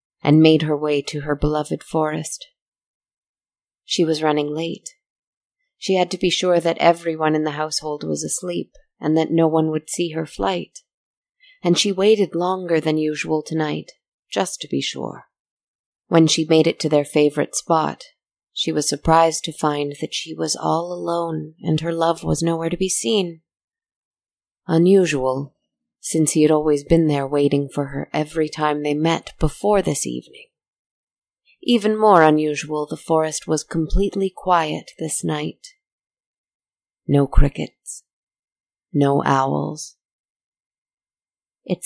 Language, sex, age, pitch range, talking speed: English, female, 30-49, 150-175 Hz, 145 wpm